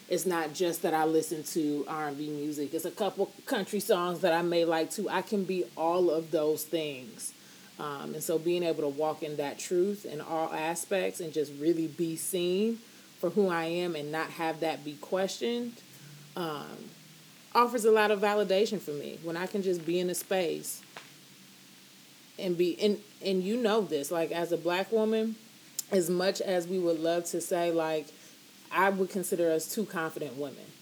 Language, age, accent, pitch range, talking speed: English, 30-49, American, 155-185 Hz, 190 wpm